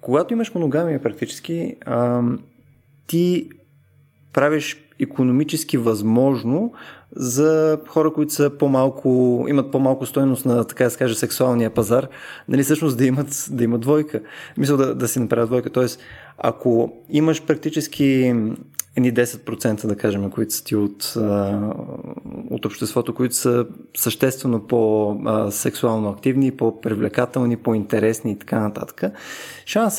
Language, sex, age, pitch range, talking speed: Bulgarian, male, 20-39, 115-145 Hz, 120 wpm